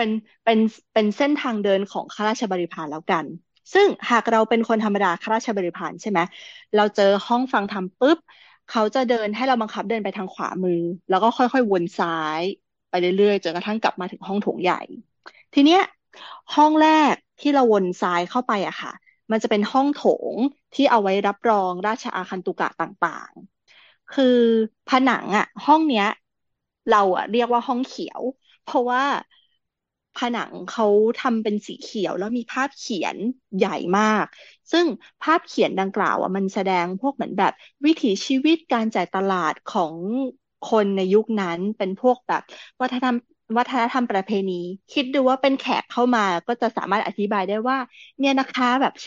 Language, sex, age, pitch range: Thai, female, 20-39, 195-255 Hz